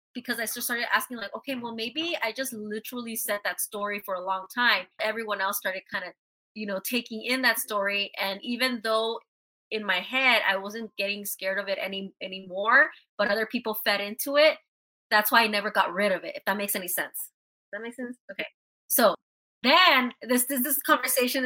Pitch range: 210-270 Hz